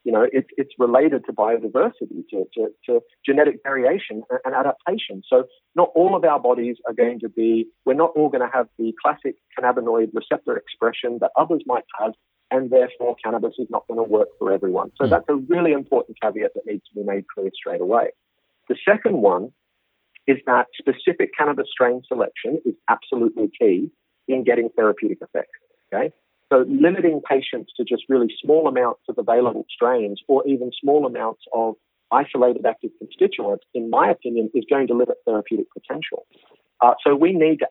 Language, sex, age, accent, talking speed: English, male, 40-59, British, 175 wpm